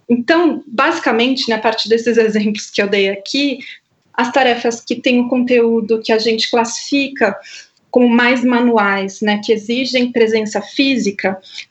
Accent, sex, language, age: Brazilian, female, Portuguese, 20-39